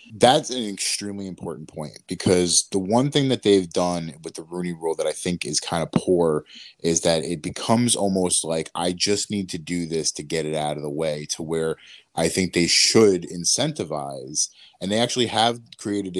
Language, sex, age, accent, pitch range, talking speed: English, male, 30-49, American, 85-100 Hz, 200 wpm